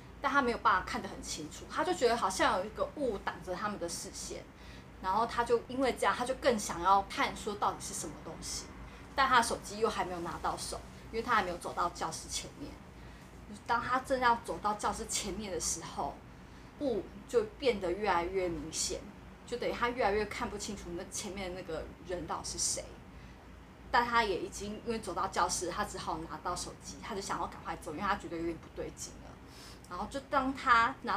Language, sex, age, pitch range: Chinese, female, 20-39, 180-240 Hz